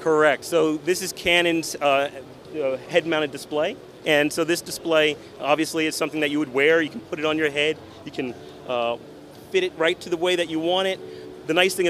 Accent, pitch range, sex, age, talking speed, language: American, 145-175 Hz, male, 30-49, 210 wpm, English